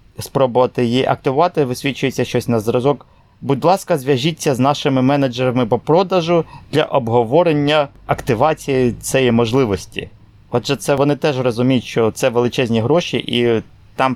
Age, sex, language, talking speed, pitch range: 20-39, male, Ukrainian, 130 wpm, 110-140 Hz